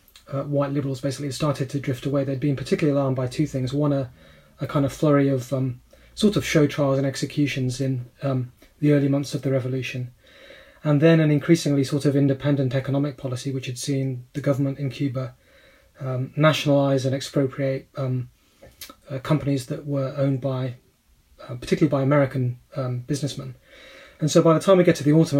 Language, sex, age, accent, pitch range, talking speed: English, male, 30-49, British, 130-145 Hz, 190 wpm